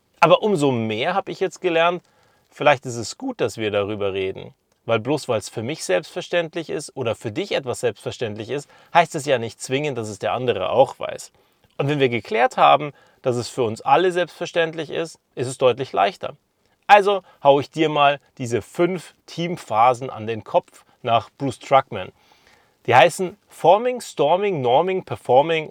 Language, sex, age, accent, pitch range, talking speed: German, male, 30-49, German, 120-170 Hz, 175 wpm